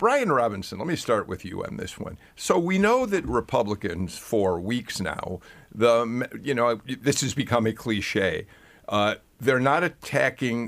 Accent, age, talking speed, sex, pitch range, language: American, 50-69, 170 wpm, male, 105-135 Hz, English